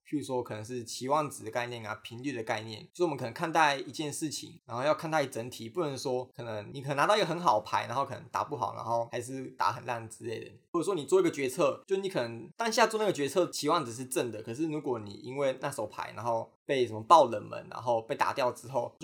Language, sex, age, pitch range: Chinese, male, 20-39, 120-155 Hz